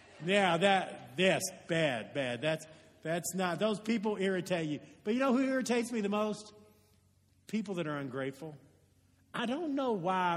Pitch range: 155-210 Hz